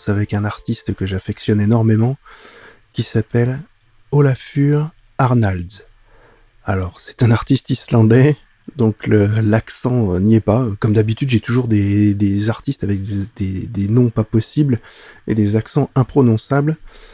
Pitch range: 105-130 Hz